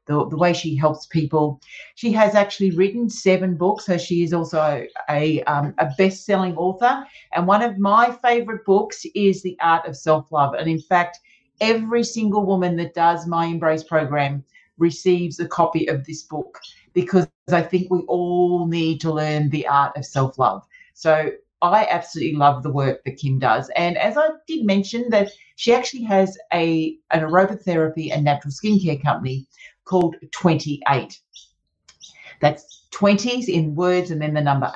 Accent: Australian